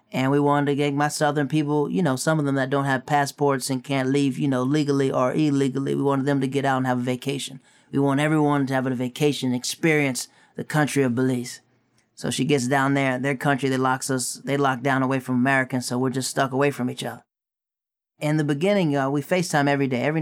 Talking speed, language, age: 235 wpm, English, 30-49